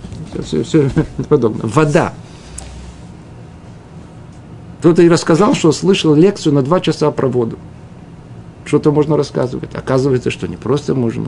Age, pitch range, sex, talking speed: 50-69, 135-180 Hz, male, 120 wpm